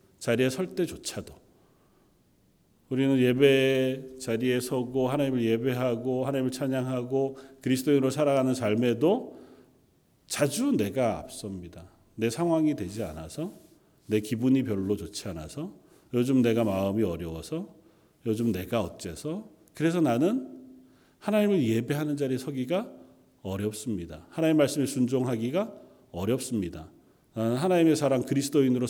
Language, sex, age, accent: Korean, male, 40-59, native